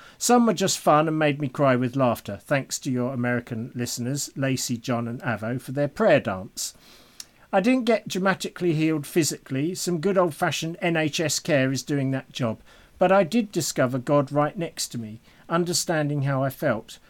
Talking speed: 180 wpm